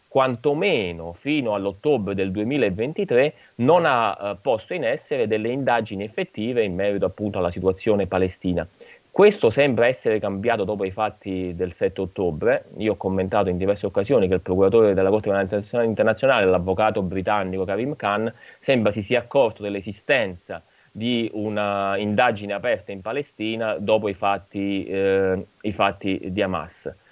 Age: 30-49